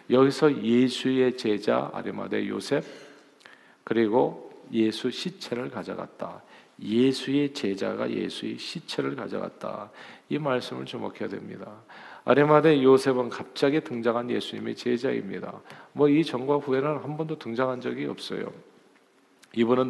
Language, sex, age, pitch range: Korean, male, 40-59, 115-140 Hz